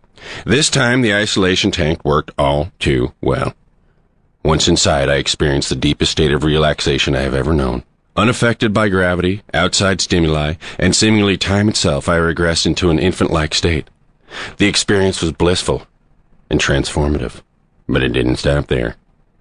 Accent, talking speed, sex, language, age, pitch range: American, 150 wpm, male, English, 40-59, 80-100 Hz